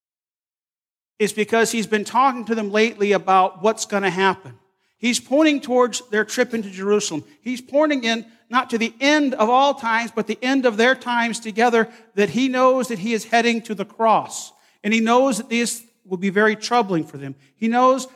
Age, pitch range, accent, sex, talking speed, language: 40-59, 190-235 Hz, American, male, 200 wpm, English